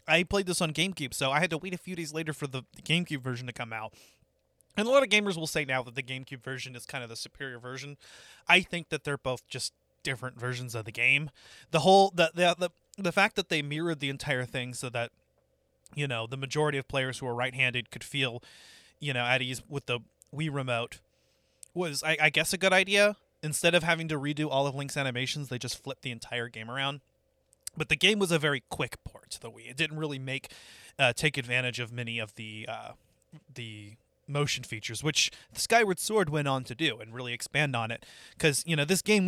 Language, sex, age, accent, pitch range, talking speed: English, male, 30-49, American, 125-160 Hz, 230 wpm